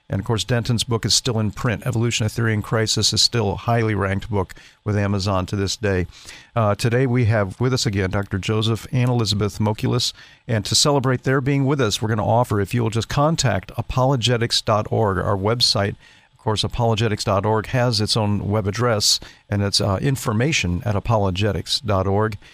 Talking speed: 185 wpm